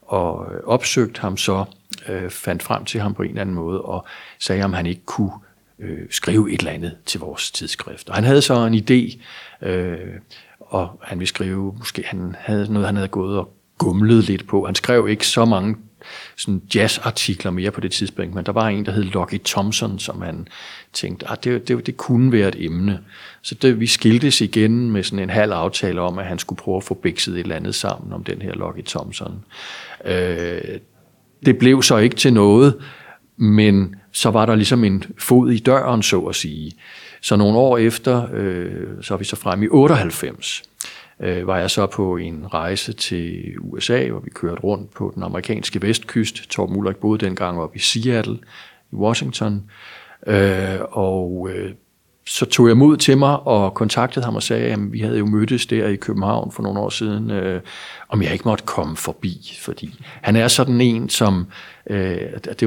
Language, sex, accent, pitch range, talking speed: Danish, male, native, 95-115 Hz, 190 wpm